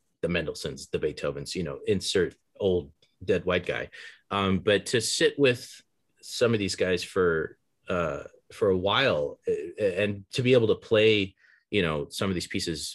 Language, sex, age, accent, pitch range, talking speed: English, male, 30-49, American, 85-110 Hz, 170 wpm